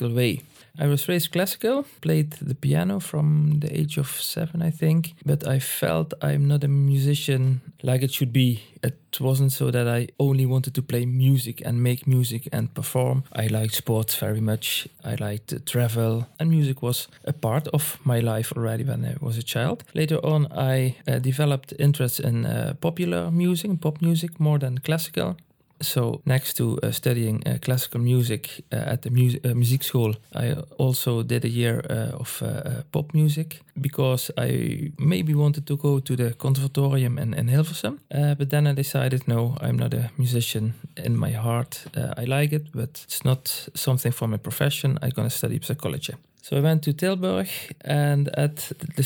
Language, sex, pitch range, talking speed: English, male, 125-150 Hz, 185 wpm